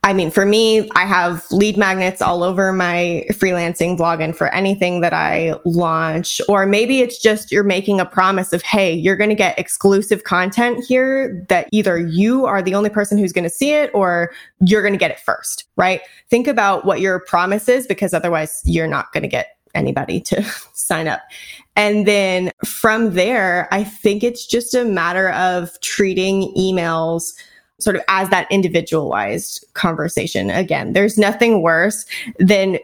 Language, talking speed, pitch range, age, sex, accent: English, 175 wpm, 170-205 Hz, 20-39, female, American